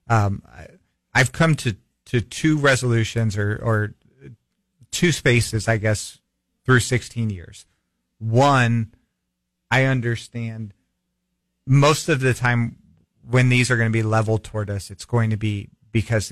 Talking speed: 140 wpm